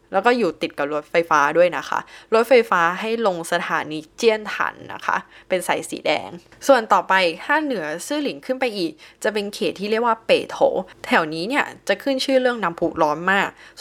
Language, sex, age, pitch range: Thai, female, 10-29, 170-235 Hz